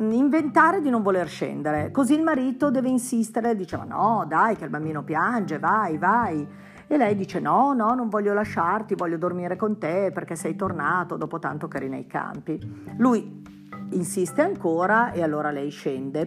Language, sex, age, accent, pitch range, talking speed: Italian, female, 50-69, native, 155-230 Hz, 175 wpm